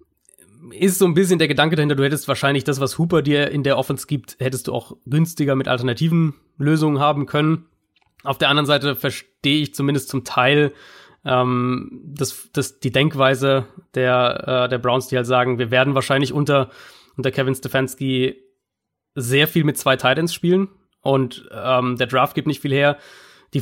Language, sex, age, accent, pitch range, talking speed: German, male, 20-39, German, 125-150 Hz, 180 wpm